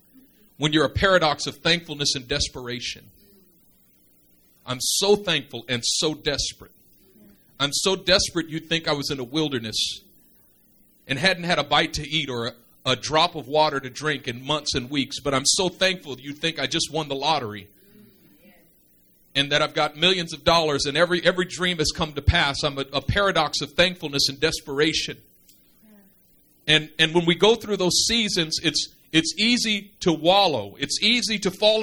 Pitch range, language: 145-215 Hz, English